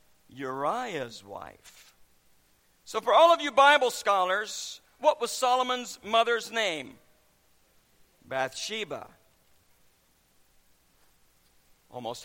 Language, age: English, 50-69